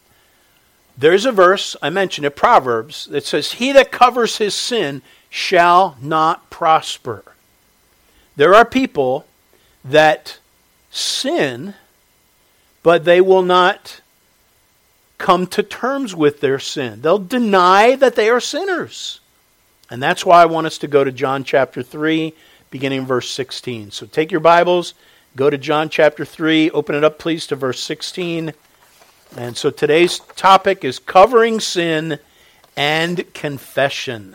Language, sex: English, male